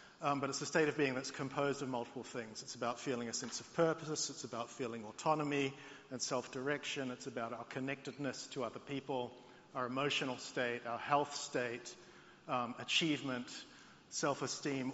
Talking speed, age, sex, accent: 165 wpm, 50-69, male, Australian